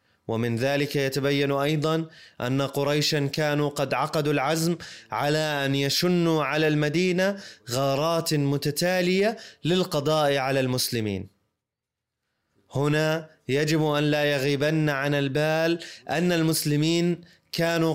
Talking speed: 100 wpm